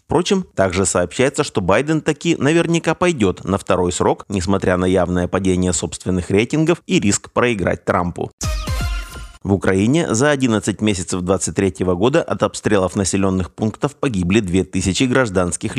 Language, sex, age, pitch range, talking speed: Russian, male, 30-49, 95-120 Hz, 135 wpm